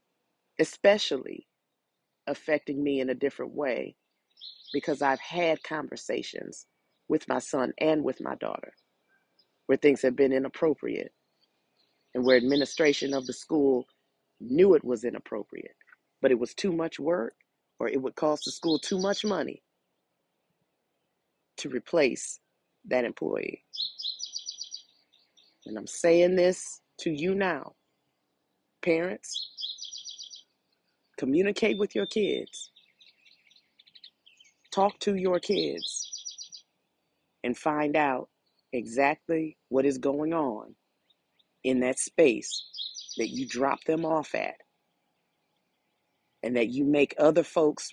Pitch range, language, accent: 135-175 Hz, English, American